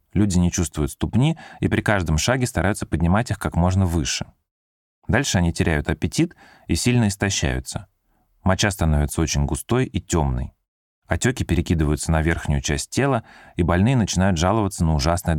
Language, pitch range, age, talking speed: Russian, 80-100 Hz, 30-49, 150 wpm